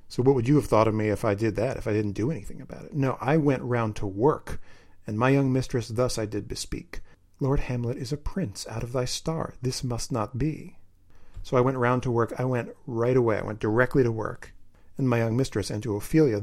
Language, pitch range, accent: English, 105-135 Hz, American